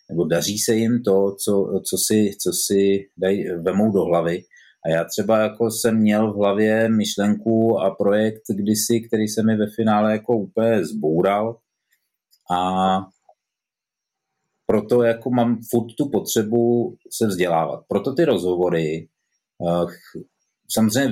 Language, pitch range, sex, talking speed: Czech, 100-115 Hz, male, 130 wpm